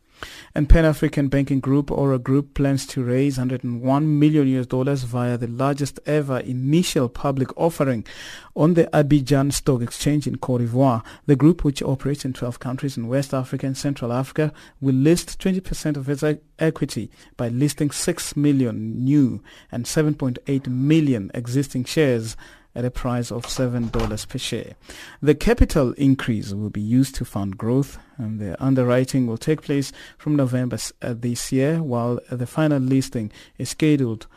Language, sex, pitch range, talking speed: English, male, 120-150 Hz, 175 wpm